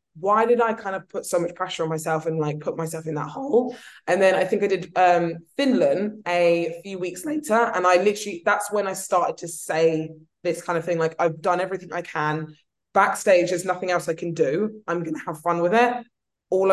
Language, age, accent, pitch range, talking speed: English, 20-39, British, 165-195 Hz, 230 wpm